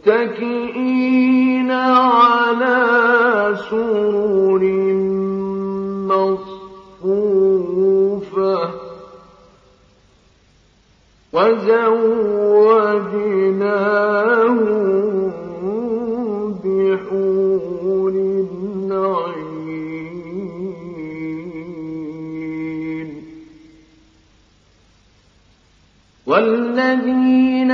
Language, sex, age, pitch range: Arabic, male, 50-69, 190-255 Hz